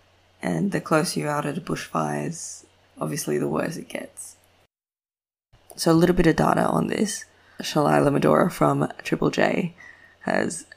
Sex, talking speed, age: female, 150 wpm, 20-39